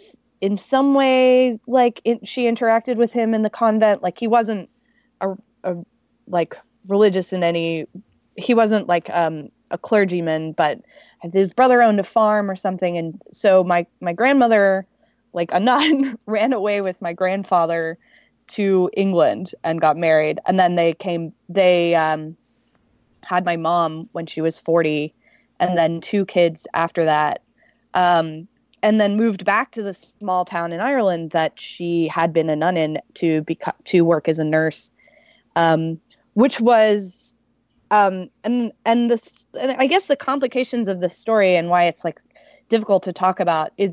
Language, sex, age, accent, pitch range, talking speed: English, female, 20-39, American, 170-220 Hz, 160 wpm